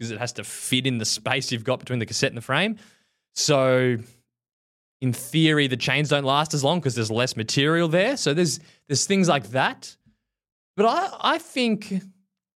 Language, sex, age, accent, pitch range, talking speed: English, male, 20-39, Australian, 130-180 Hz, 190 wpm